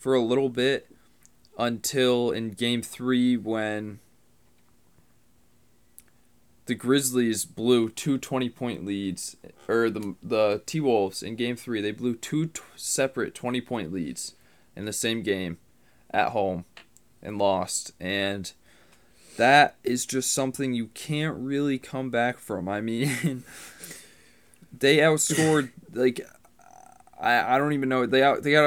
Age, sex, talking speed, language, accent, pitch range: 20-39, male, 135 wpm, English, American, 105-130 Hz